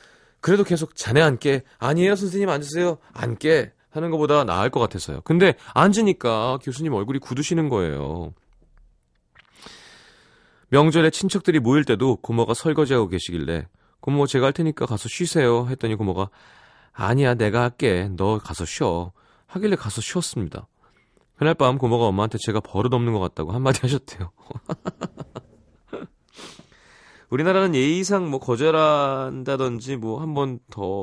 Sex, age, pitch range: male, 30-49, 100-155 Hz